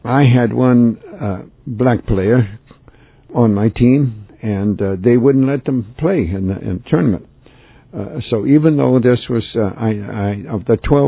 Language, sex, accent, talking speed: English, male, American, 155 wpm